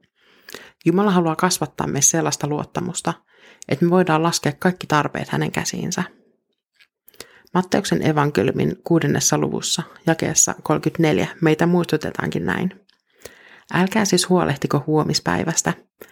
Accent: native